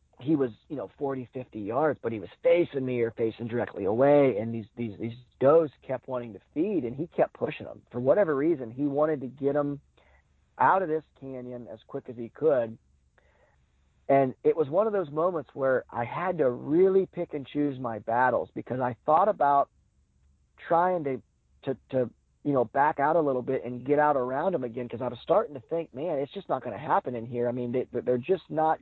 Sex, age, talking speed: male, 40-59, 220 wpm